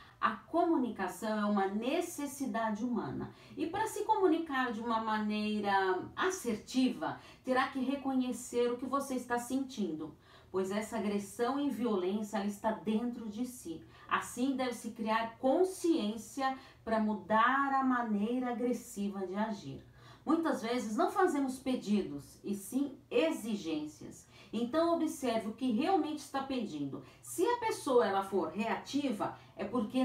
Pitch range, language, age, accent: 205-270 Hz, Portuguese, 40-59, Brazilian